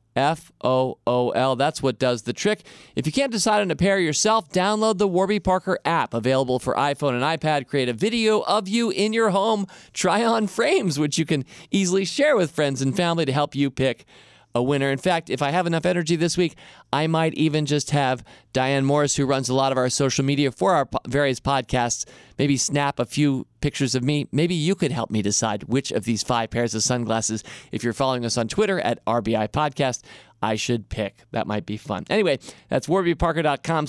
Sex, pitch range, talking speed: male, 125-185 Hz, 205 wpm